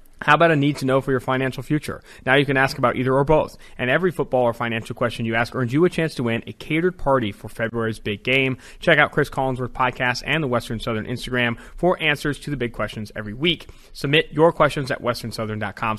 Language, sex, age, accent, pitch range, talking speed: English, male, 30-49, American, 120-145 Hz, 235 wpm